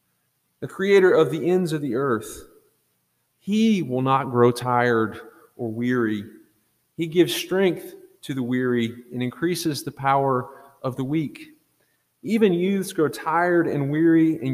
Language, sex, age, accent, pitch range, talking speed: English, male, 30-49, American, 125-175 Hz, 145 wpm